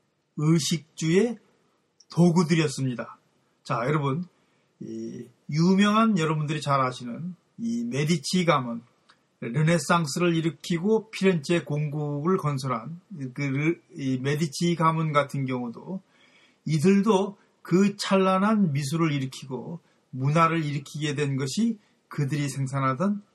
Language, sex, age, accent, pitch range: Korean, male, 40-59, native, 145-185 Hz